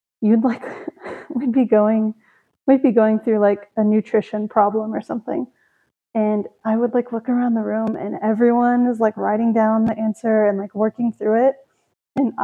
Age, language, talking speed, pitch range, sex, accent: 20-39, English, 180 wpm, 215-250 Hz, female, American